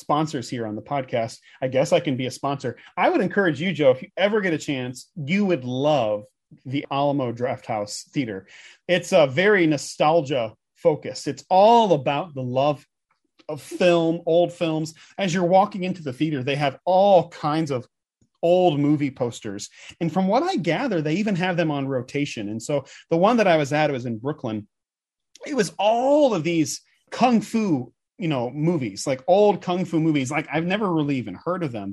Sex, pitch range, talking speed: male, 140-185 Hz, 195 wpm